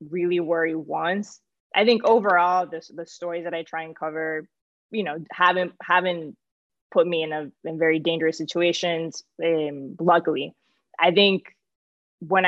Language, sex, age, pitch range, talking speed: English, female, 20-39, 160-180 Hz, 150 wpm